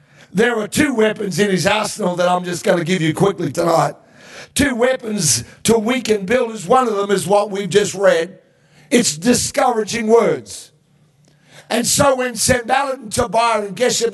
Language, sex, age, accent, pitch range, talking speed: English, male, 60-79, American, 185-250 Hz, 170 wpm